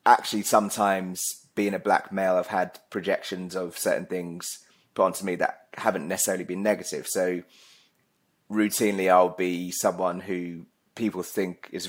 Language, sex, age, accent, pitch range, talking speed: English, male, 20-39, British, 90-95 Hz, 145 wpm